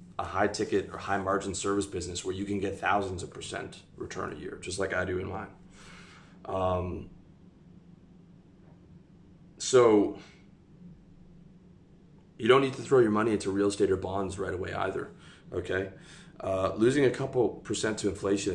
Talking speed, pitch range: 160 wpm, 95-100 Hz